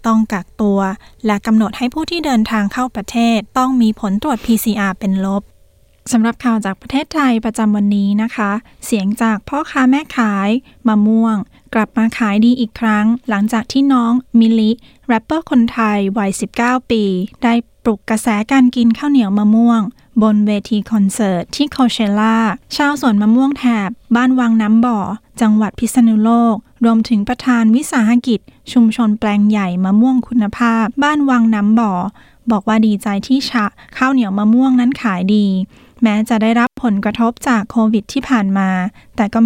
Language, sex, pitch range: Thai, female, 210-245 Hz